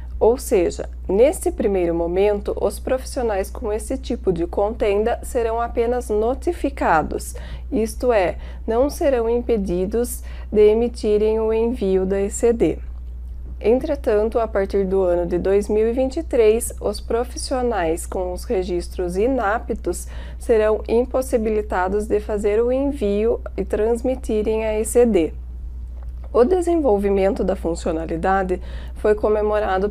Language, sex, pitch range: Portuguese, female, 195-240 Hz